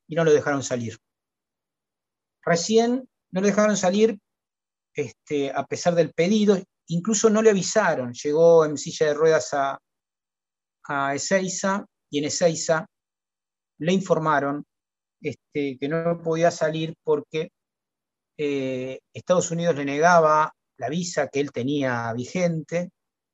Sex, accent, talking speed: male, Argentinian, 120 wpm